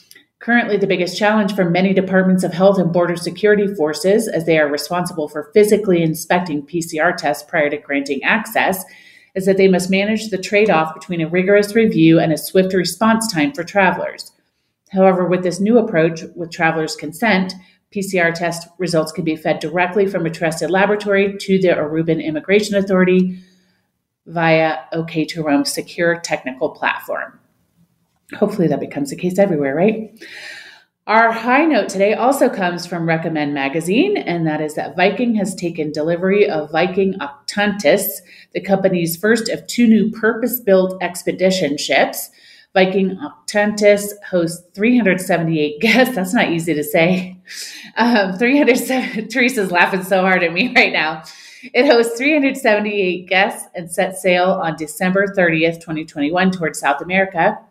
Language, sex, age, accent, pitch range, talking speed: English, female, 40-59, American, 165-205 Hz, 150 wpm